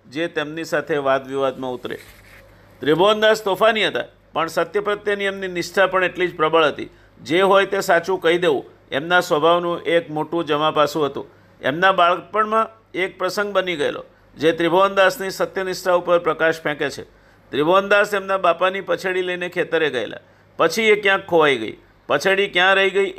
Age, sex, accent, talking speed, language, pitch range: 50-69, male, native, 155 wpm, Gujarati, 160-195 Hz